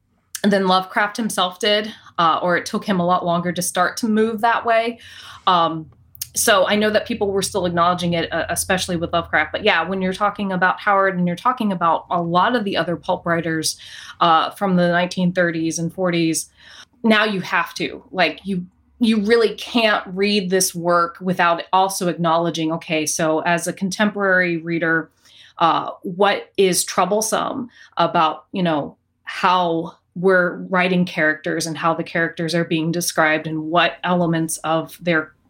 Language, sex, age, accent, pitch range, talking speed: English, female, 20-39, American, 165-200 Hz, 170 wpm